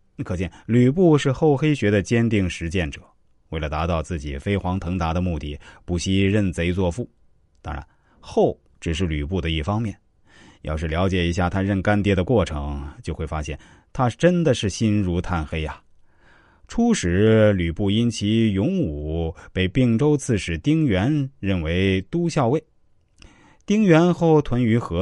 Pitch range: 90-130 Hz